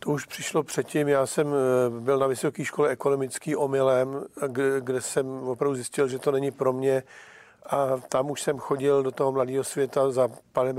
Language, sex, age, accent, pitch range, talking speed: Czech, male, 50-69, native, 130-145 Hz, 180 wpm